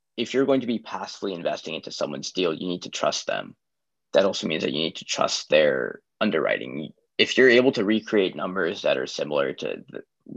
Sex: male